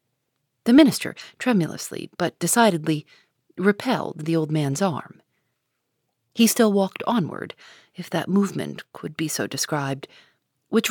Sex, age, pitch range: female, 40-59, 150-215 Hz